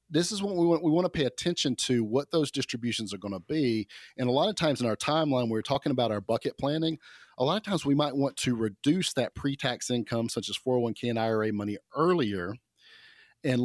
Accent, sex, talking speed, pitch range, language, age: American, male, 225 wpm, 110-140 Hz, English, 40-59